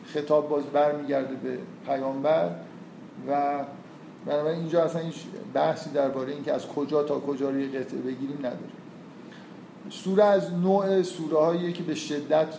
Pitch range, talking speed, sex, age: 140-160 Hz, 135 wpm, male, 50-69